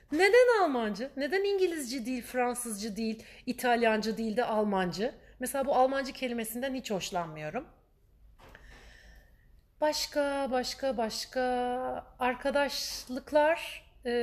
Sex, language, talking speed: female, Turkish, 90 wpm